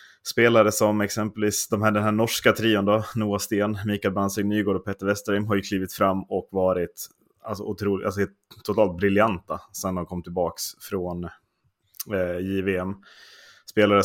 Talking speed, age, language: 145 wpm, 20-39, Swedish